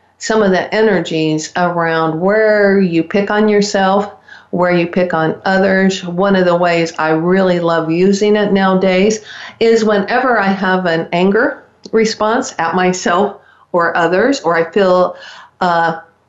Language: English